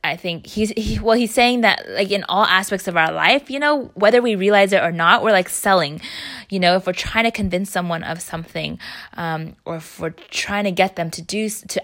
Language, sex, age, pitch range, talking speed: English, female, 20-39, 175-220 Hz, 240 wpm